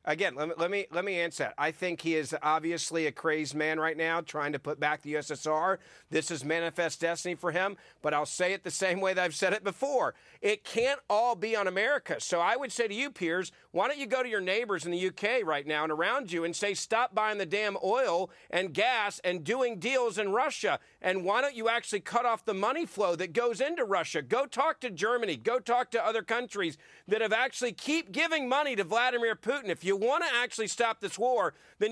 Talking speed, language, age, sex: 240 wpm, English, 40-59, male